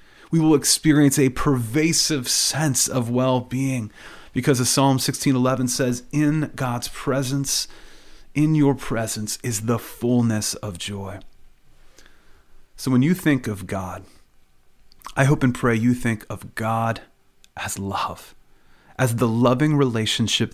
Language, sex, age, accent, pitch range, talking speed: English, male, 30-49, American, 115-140 Hz, 130 wpm